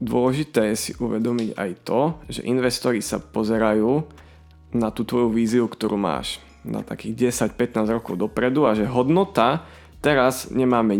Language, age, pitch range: Slovak, 20-39, 110-130 Hz